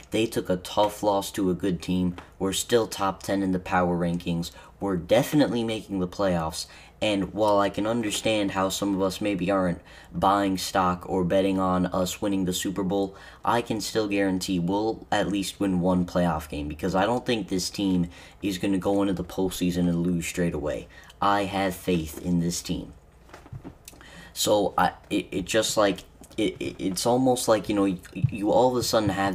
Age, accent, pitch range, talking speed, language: 10-29, American, 90-105 Hz, 200 wpm, English